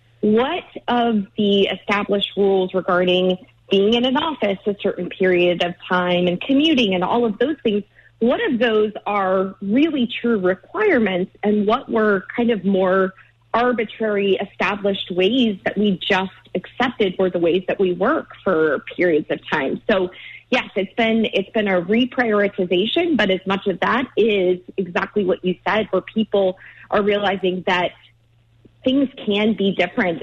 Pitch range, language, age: 180-225 Hz, English, 30-49